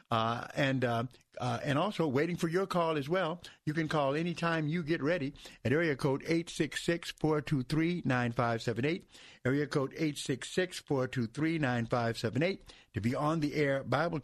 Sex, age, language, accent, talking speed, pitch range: male, 50-69, English, American, 135 wpm, 125-165 Hz